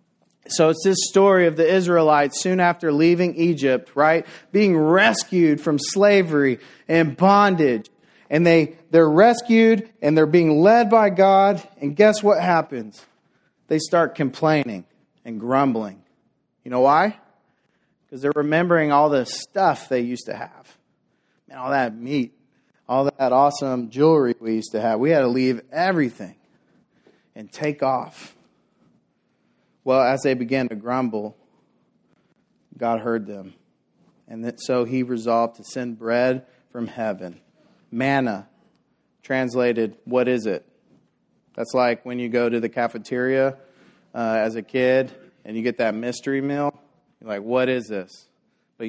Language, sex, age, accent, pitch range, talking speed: English, male, 30-49, American, 120-155 Hz, 140 wpm